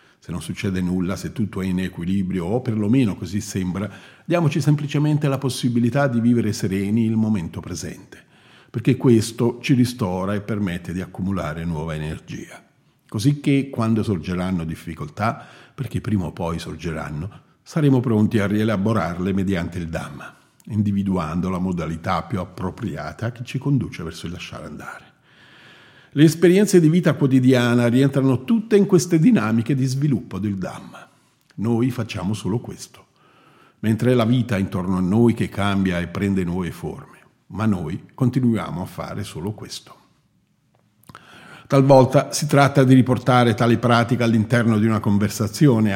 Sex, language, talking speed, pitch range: male, Italian, 145 wpm, 95-130 Hz